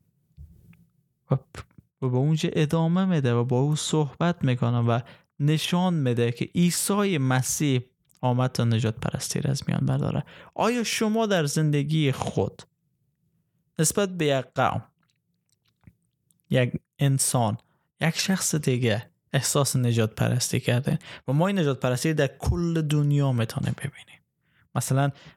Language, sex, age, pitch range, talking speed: Persian, male, 20-39, 130-160 Hz, 125 wpm